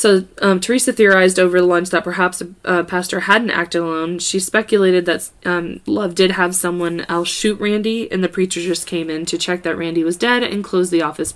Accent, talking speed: American, 220 wpm